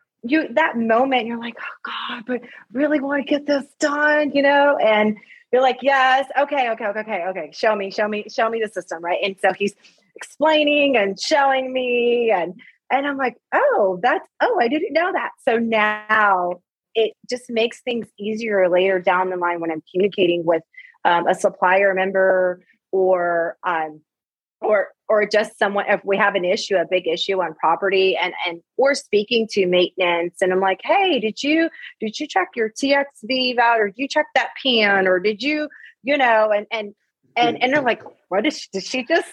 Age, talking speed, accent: 30-49, 195 wpm, American